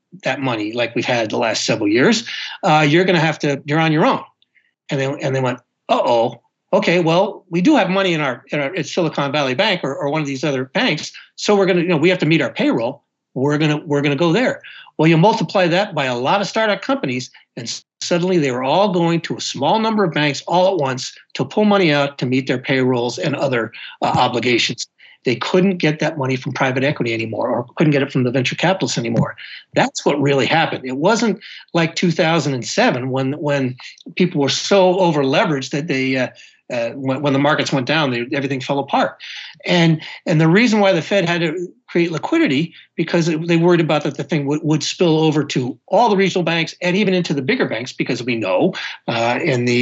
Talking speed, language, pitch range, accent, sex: 230 wpm, English, 135-180 Hz, American, male